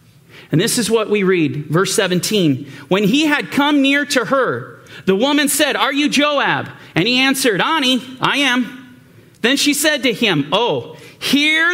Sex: male